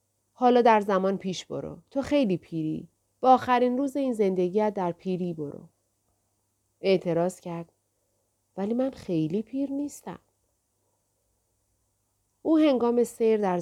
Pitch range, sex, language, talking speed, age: 160-230 Hz, female, Persian, 120 wpm, 40-59